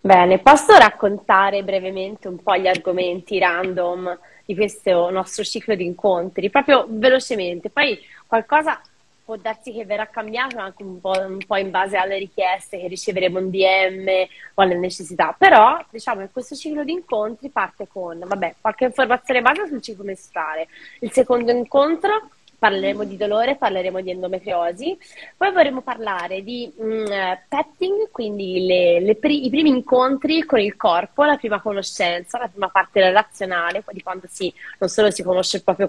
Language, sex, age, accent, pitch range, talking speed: Italian, female, 20-39, native, 185-235 Hz, 160 wpm